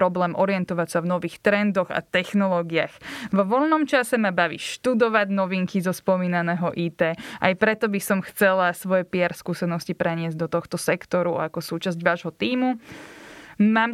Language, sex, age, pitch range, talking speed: Slovak, female, 20-39, 175-205 Hz, 150 wpm